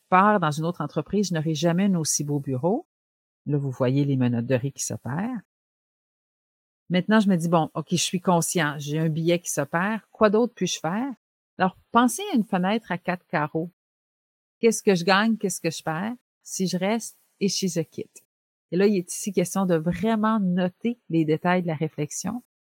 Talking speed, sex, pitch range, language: 205 wpm, female, 155-200 Hz, French